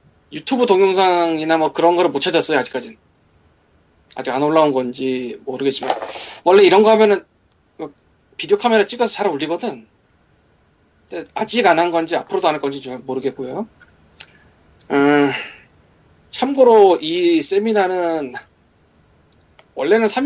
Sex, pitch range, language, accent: male, 140-220 Hz, Korean, native